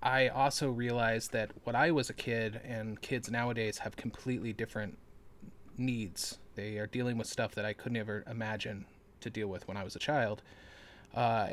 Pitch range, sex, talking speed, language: 105-120 Hz, male, 180 wpm, English